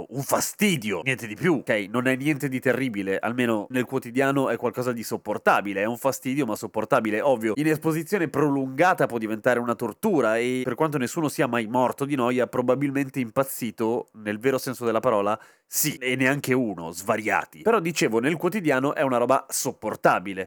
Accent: native